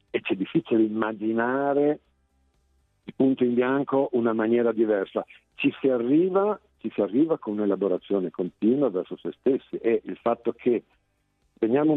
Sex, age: male, 50-69